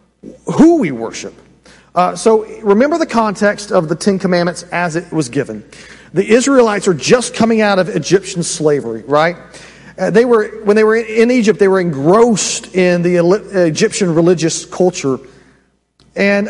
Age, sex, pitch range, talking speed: 40-59, male, 175-220 Hz, 155 wpm